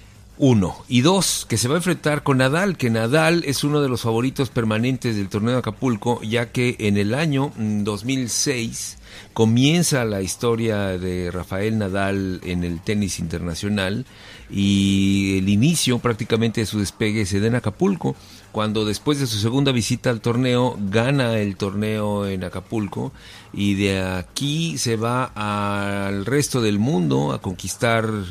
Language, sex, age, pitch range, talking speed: Spanish, male, 50-69, 100-125 Hz, 155 wpm